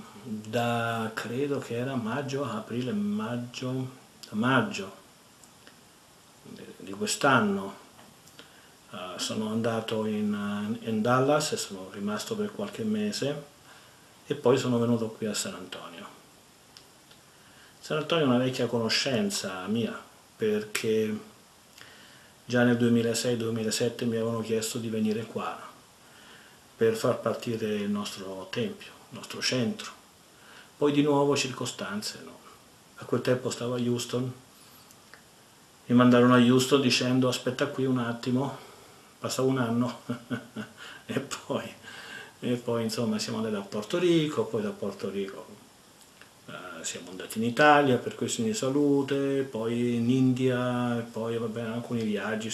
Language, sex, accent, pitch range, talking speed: Italian, male, native, 115-140 Hz, 125 wpm